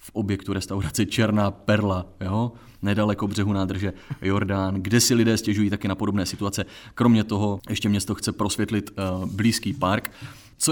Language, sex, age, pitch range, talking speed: Czech, male, 30-49, 100-115 Hz, 150 wpm